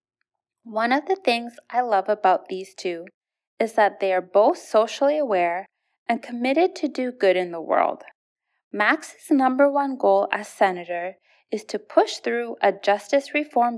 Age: 20-39